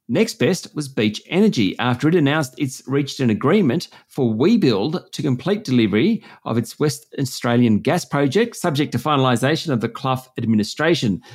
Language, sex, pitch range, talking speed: English, male, 130-185 Hz, 160 wpm